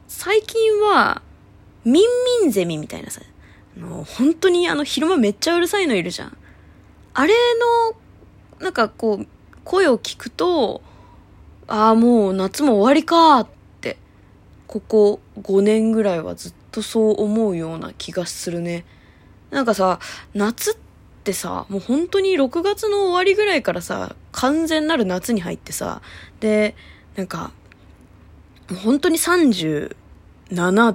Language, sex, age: Japanese, female, 20-39